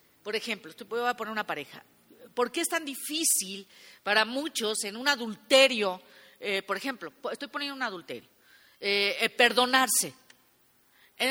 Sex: female